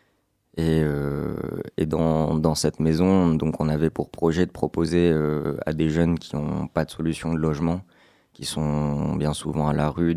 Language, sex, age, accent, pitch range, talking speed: French, male, 20-39, French, 75-80 Hz, 190 wpm